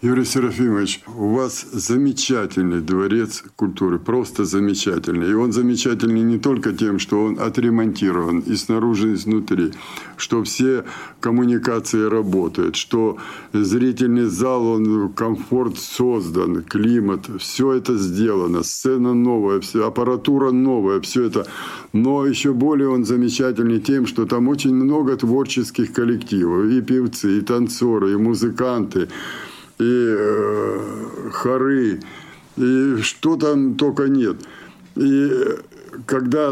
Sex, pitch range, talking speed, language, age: male, 115-140 Hz, 115 wpm, Russian, 50-69